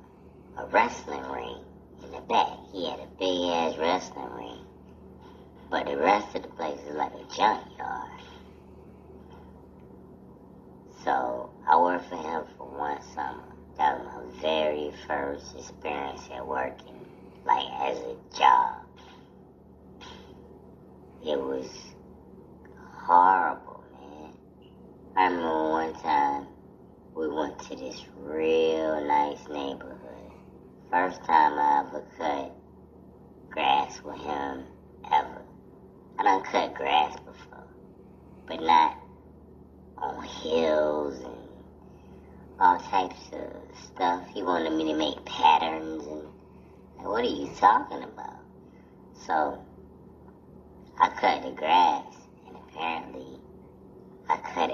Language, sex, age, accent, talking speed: English, male, 20-39, American, 110 wpm